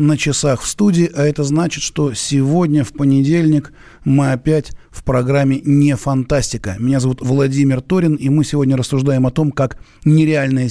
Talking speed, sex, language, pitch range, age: 165 wpm, male, Russian, 125-150 Hz, 30-49